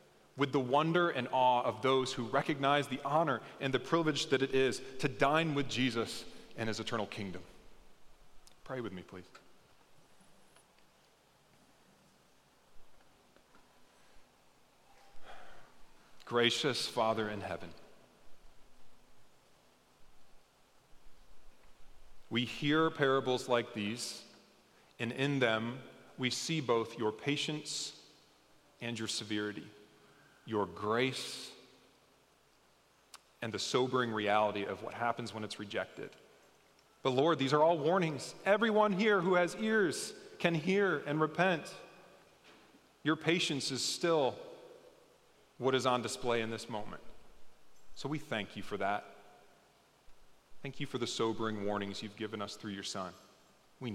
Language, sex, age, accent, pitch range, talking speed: English, male, 40-59, American, 110-150 Hz, 120 wpm